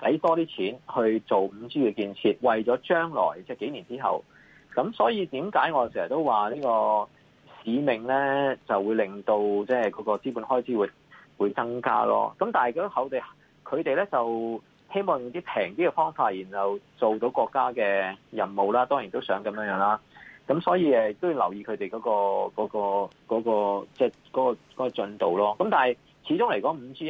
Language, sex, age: Chinese, male, 30-49